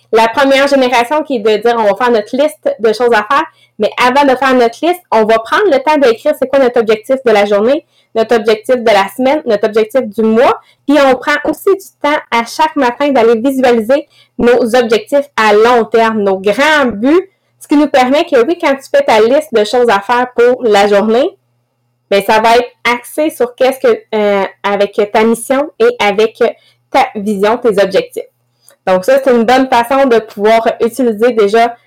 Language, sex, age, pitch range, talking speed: English, female, 20-39, 225-280 Hz, 205 wpm